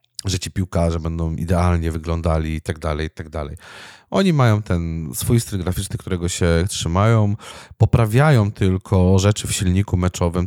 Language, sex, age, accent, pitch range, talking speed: Polish, male, 30-49, native, 85-110 Hz, 155 wpm